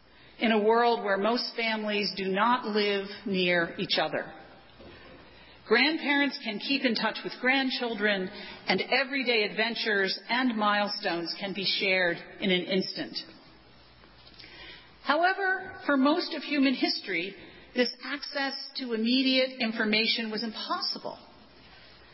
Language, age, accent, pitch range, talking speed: English, 40-59, American, 205-275 Hz, 115 wpm